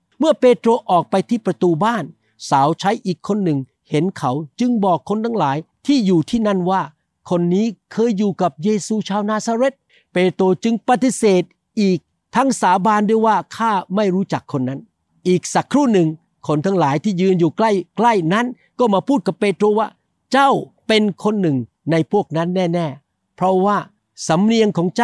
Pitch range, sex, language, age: 155-215 Hz, male, Thai, 60-79